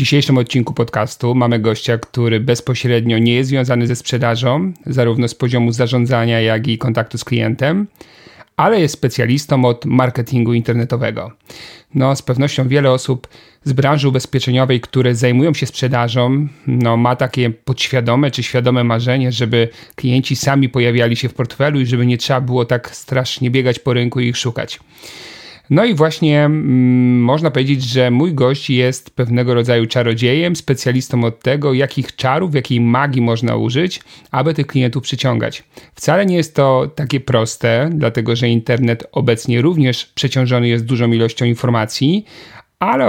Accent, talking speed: native, 150 wpm